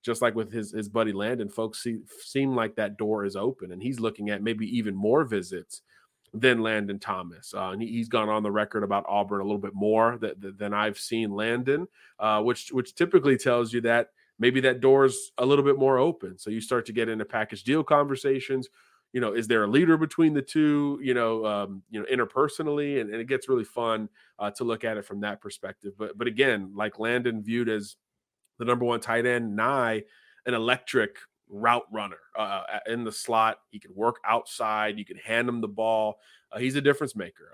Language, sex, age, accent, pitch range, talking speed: English, male, 30-49, American, 105-135 Hz, 215 wpm